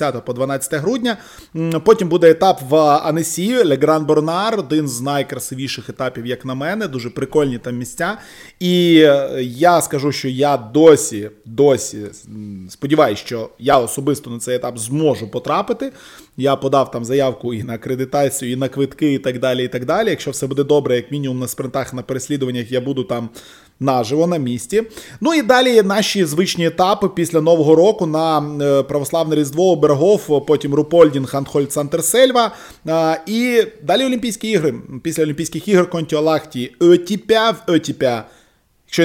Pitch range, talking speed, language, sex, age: 125-165 Hz, 145 wpm, Ukrainian, male, 20-39